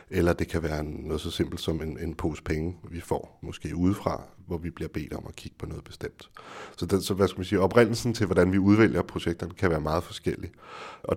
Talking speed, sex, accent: 235 wpm, male, native